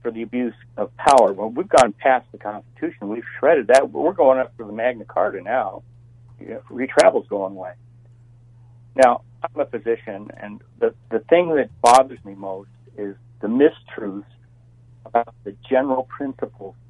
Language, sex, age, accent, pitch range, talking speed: English, male, 60-79, American, 105-125 Hz, 155 wpm